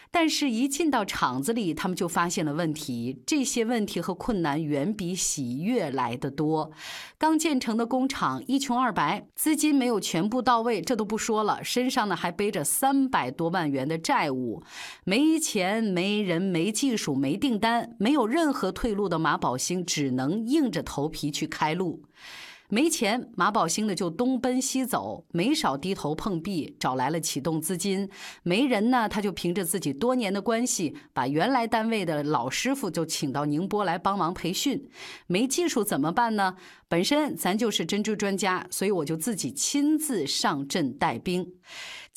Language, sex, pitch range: Chinese, female, 165-250 Hz